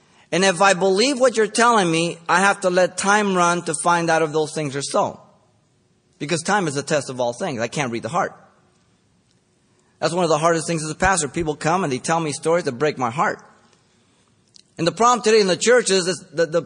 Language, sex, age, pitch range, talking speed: English, male, 30-49, 120-180 Hz, 240 wpm